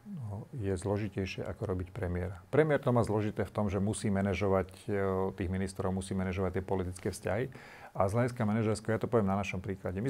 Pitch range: 95-110 Hz